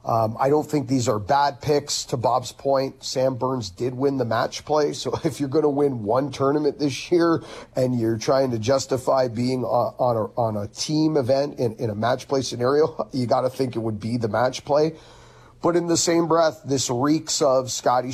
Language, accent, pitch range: English, American, 115-140 Hz